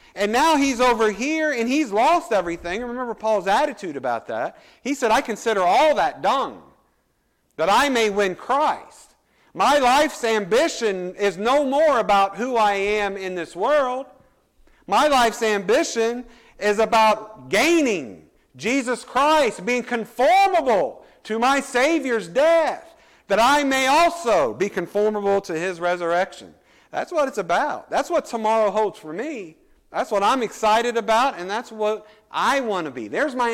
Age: 50-69